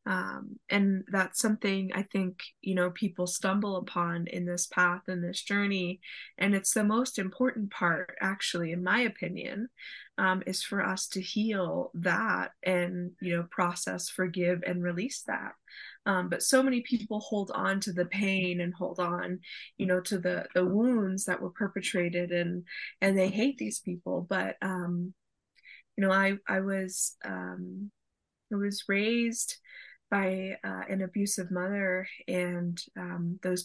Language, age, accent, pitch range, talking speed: English, 20-39, American, 180-210 Hz, 160 wpm